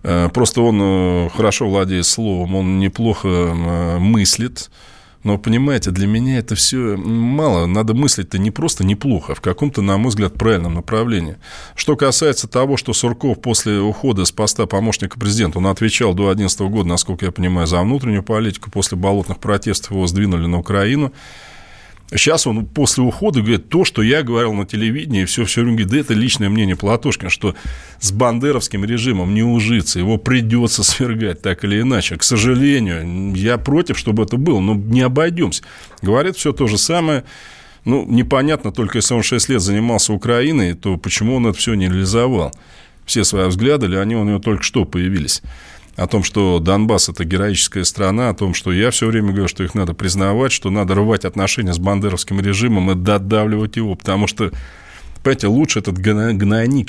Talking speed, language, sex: 175 wpm, Russian, male